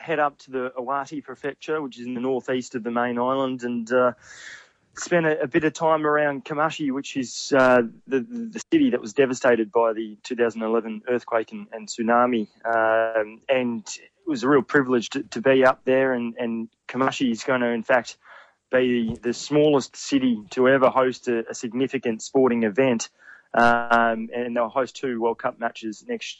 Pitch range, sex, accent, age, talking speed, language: 115-130 Hz, male, Australian, 20-39, 185 wpm, English